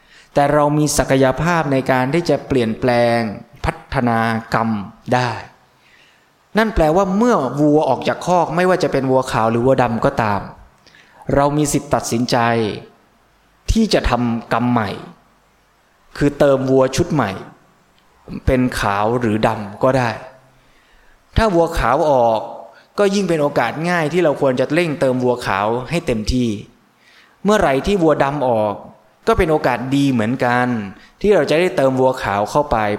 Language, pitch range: Thai, 115-150 Hz